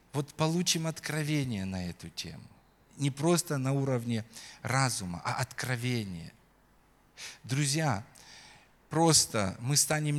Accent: native